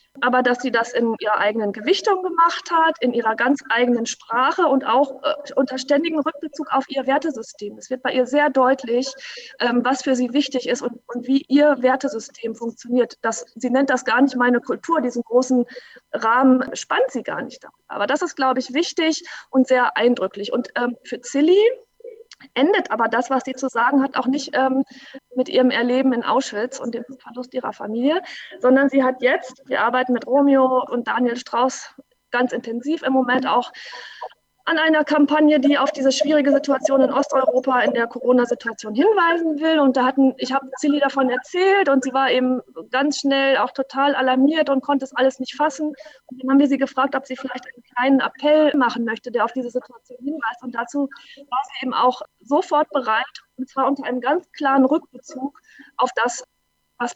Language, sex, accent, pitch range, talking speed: German, female, German, 245-285 Hz, 185 wpm